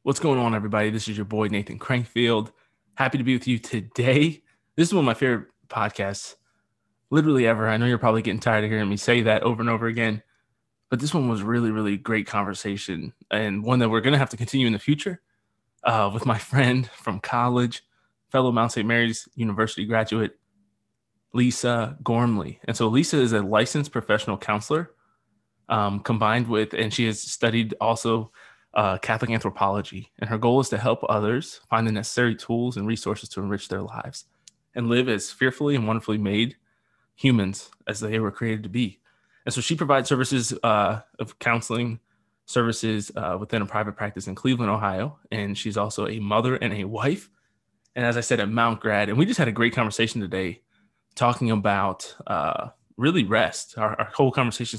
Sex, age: male, 20-39